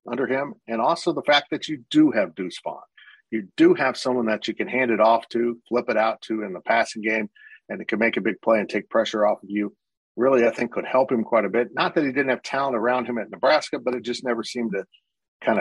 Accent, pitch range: American, 105-130 Hz